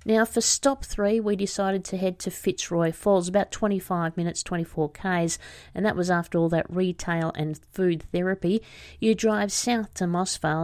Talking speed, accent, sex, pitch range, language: 175 wpm, Australian, female, 155-190 Hz, English